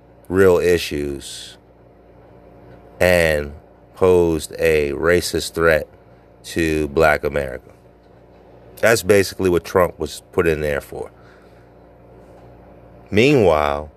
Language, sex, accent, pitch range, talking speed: English, male, American, 65-85 Hz, 85 wpm